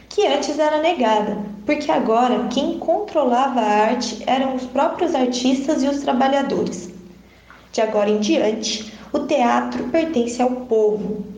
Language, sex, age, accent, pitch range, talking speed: Portuguese, female, 20-39, Brazilian, 220-280 Hz, 135 wpm